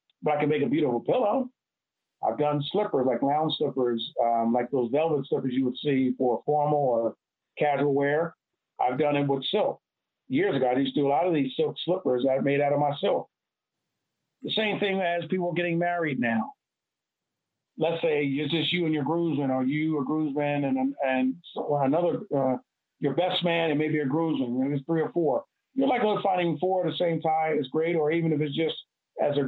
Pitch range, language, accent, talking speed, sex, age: 140-170 Hz, English, American, 210 wpm, male, 50-69